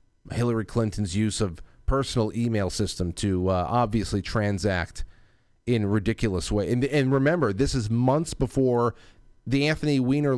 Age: 30-49